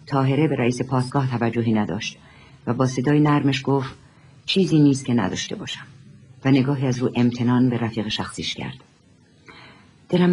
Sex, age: female, 50-69